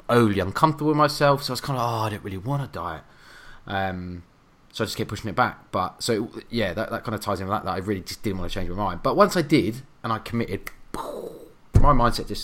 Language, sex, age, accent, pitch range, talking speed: English, male, 20-39, British, 85-110 Hz, 265 wpm